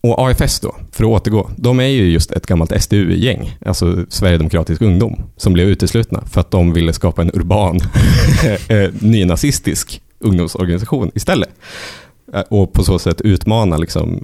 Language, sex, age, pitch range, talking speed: Swedish, male, 30-49, 85-105 Hz, 150 wpm